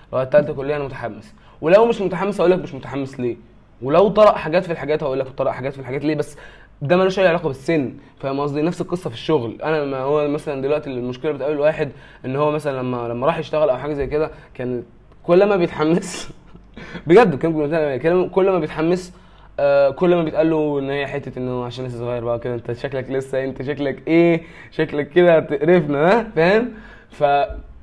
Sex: male